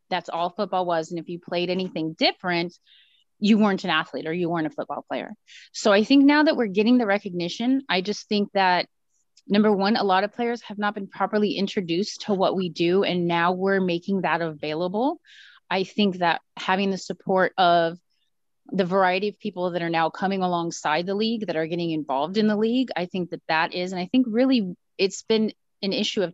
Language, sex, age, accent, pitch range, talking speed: English, female, 30-49, American, 175-225 Hz, 210 wpm